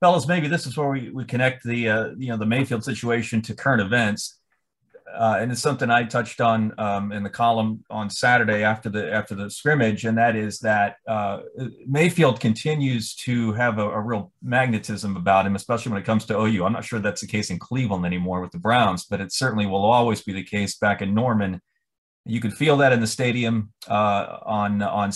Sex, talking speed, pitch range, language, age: male, 215 wpm, 105-125 Hz, English, 30-49